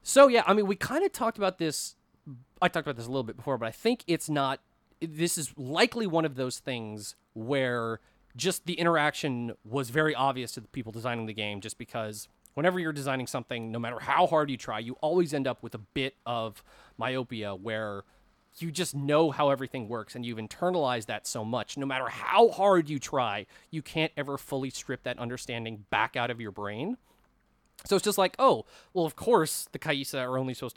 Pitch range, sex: 120-165 Hz, male